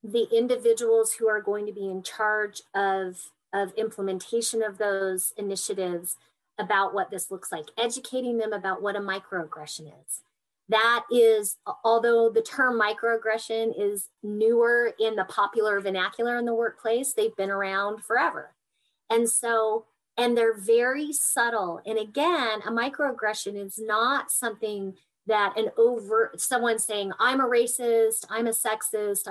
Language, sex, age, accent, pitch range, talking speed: English, female, 30-49, American, 195-230 Hz, 145 wpm